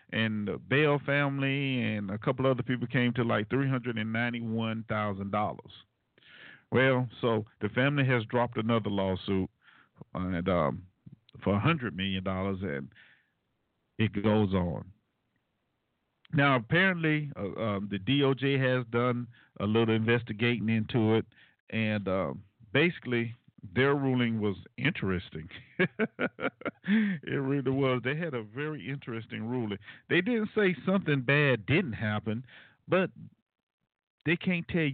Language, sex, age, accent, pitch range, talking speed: English, male, 50-69, American, 110-140 Hz, 115 wpm